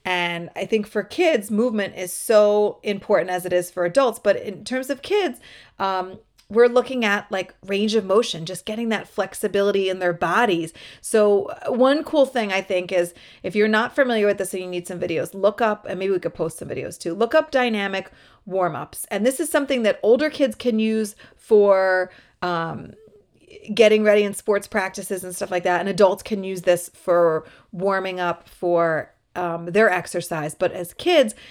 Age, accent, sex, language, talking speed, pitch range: 30-49, American, female, English, 195 wpm, 180-235 Hz